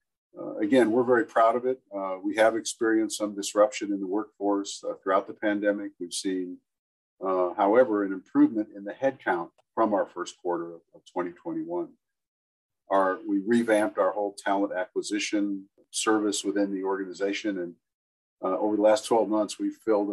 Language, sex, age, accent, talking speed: English, male, 50-69, American, 165 wpm